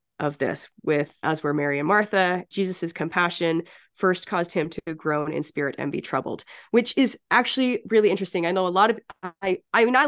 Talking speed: 200 wpm